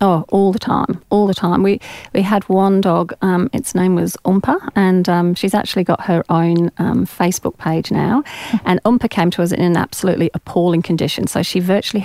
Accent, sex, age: British, female, 40-59